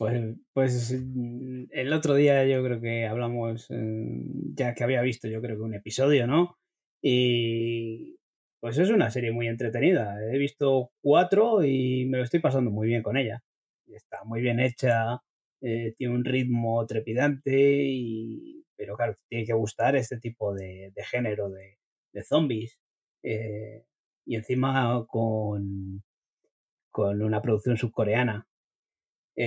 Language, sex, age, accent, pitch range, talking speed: Spanish, male, 30-49, Spanish, 110-135 Hz, 145 wpm